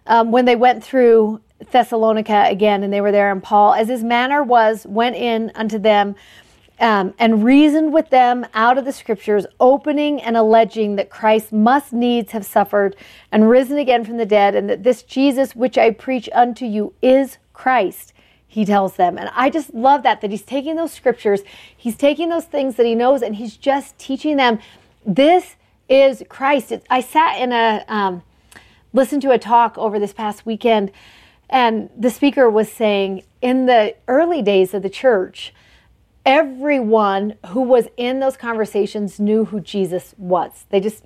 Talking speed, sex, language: 175 wpm, female, English